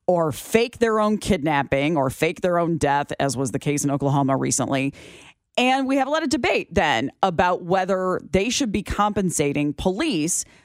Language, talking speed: English, 180 wpm